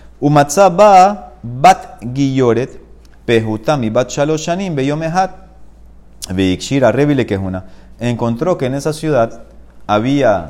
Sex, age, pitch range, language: male, 30-49, 110-150 Hz, Spanish